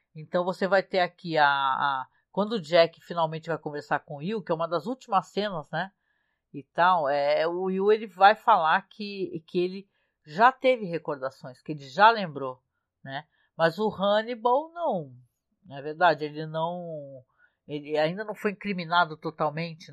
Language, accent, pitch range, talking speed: Portuguese, Brazilian, 160-215 Hz, 165 wpm